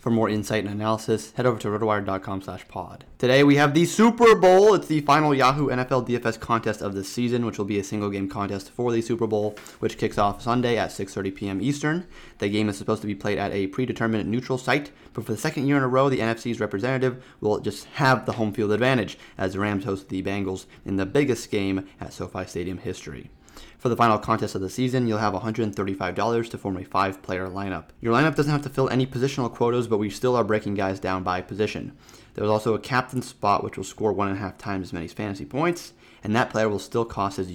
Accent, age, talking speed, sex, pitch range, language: American, 30-49, 235 wpm, male, 100-125 Hz, English